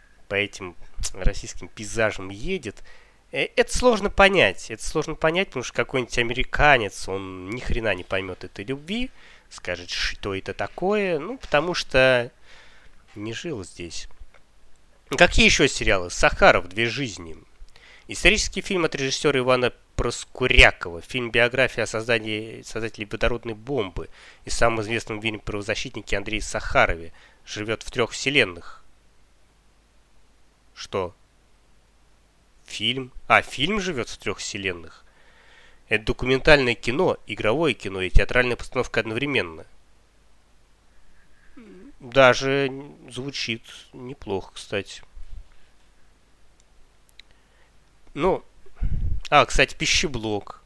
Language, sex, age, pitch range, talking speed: Russian, male, 20-39, 100-140 Hz, 100 wpm